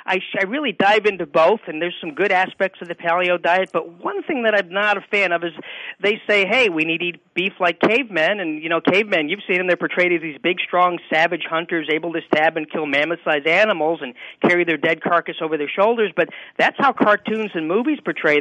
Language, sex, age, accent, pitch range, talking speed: English, male, 40-59, American, 170-220 Hz, 230 wpm